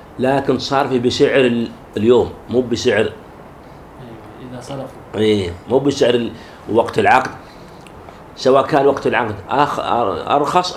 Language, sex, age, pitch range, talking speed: Arabic, male, 50-69, 105-140 Hz, 105 wpm